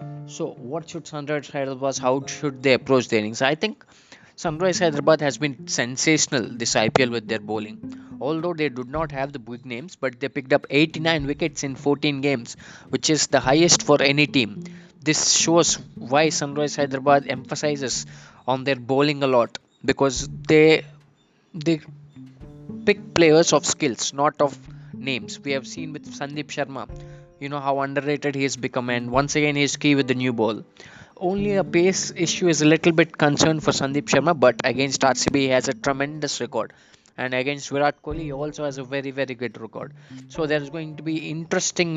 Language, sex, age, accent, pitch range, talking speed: Telugu, male, 20-39, native, 135-155 Hz, 185 wpm